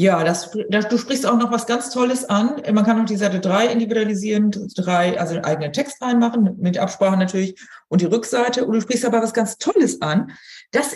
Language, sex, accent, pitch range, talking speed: German, female, German, 185-245 Hz, 215 wpm